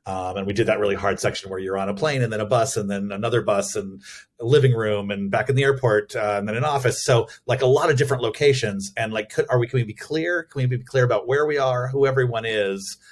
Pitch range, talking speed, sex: 100-125 Hz, 285 wpm, male